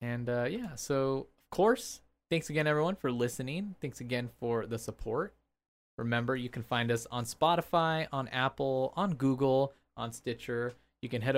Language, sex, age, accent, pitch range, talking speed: English, male, 20-39, American, 120-155 Hz, 170 wpm